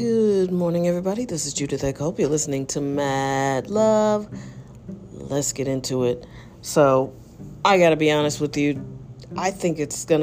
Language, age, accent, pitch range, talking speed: English, 40-59, American, 135-170 Hz, 160 wpm